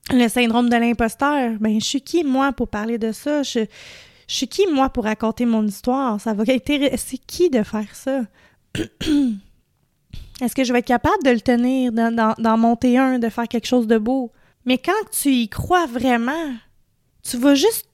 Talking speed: 185 wpm